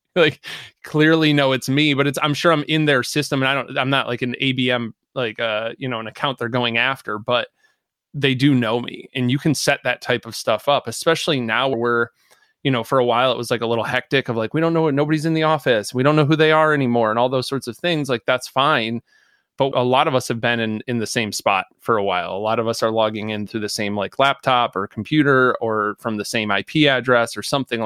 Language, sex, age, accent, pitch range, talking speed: English, male, 20-39, American, 115-145 Hz, 260 wpm